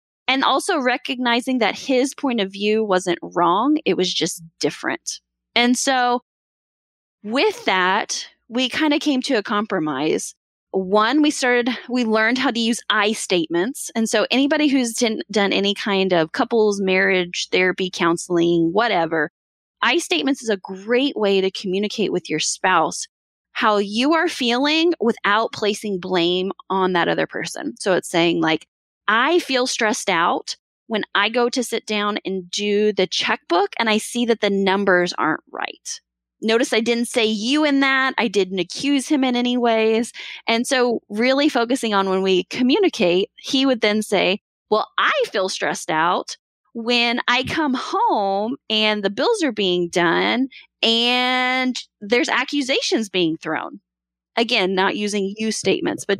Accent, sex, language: American, female, English